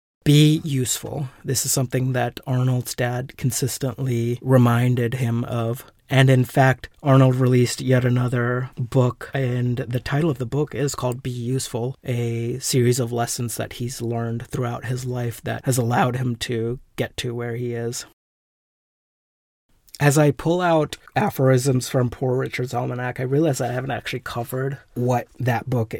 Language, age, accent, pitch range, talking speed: English, 30-49, American, 120-135 Hz, 155 wpm